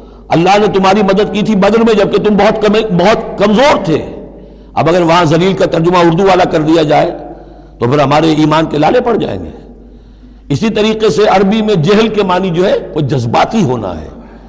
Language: Urdu